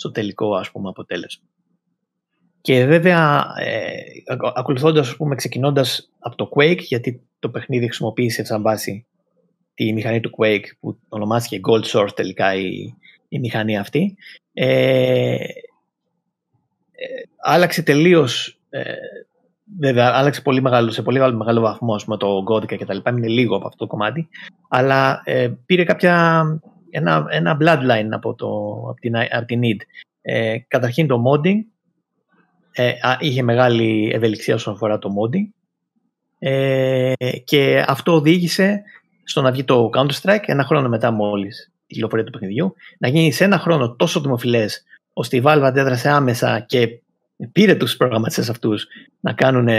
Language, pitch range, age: Greek, 110-165 Hz, 30-49